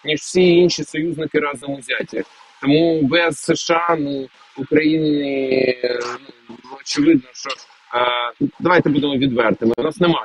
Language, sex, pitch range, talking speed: Ukrainian, male, 135-175 Hz, 105 wpm